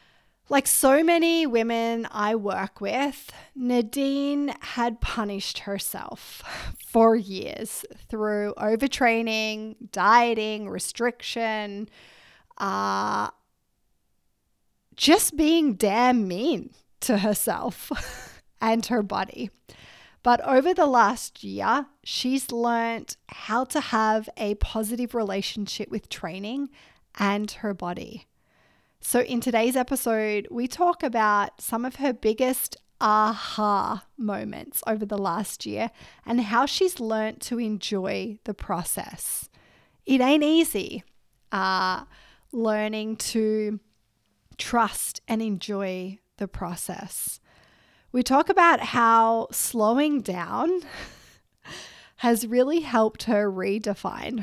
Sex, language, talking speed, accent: female, English, 100 wpm, Australian